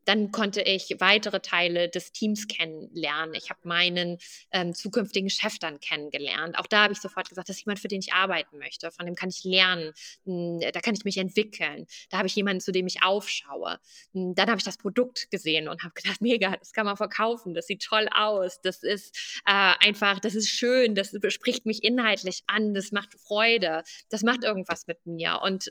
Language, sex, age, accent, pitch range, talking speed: German, female, 20-39, German, 185-225 Hz, 205 wpm